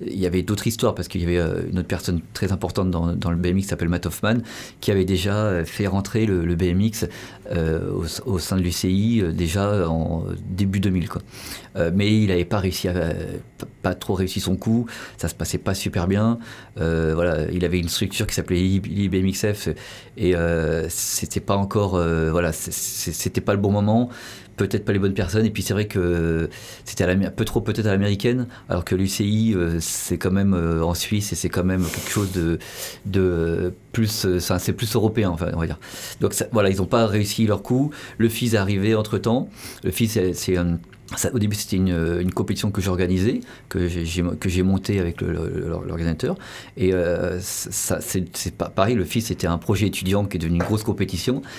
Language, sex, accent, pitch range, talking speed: French, male, French, 90-110 Hz, 210 wpm